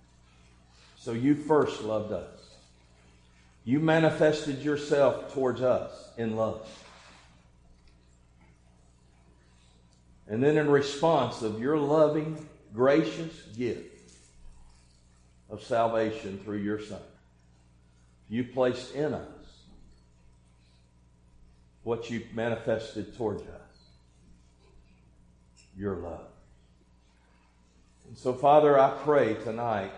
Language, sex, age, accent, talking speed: English, male, 50-69, American, 85 wpm